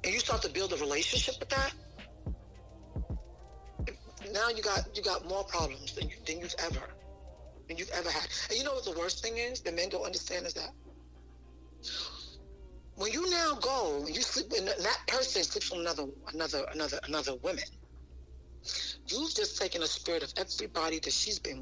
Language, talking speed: English, 185 wpm